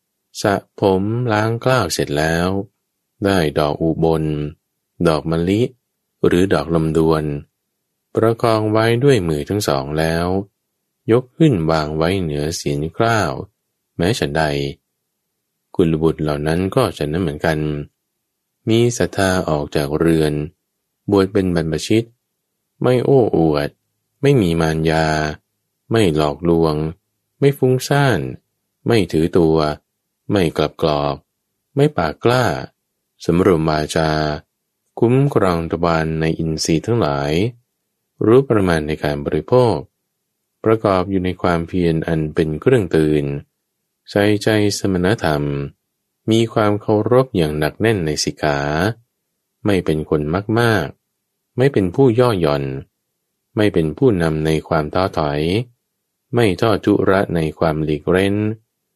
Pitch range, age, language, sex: 80-110 Hz, 20-39, English, male